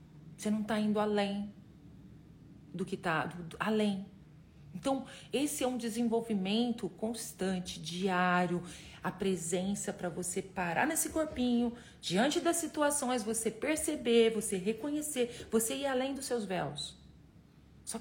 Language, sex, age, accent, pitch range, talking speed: Portuguese, female, 40-59, Brazilian, 170-230 Hz, 125 wpm